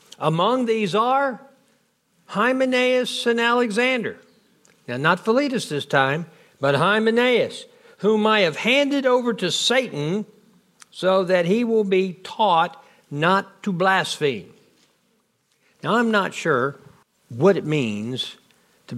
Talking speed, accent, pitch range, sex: 115 wpm, American, 150-220 Hz, male